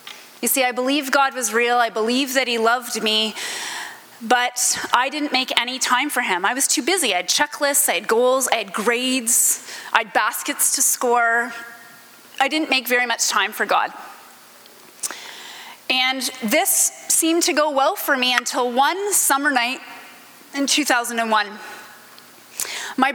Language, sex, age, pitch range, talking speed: English, female, 30-49, 230-285 Hz, 160 wpm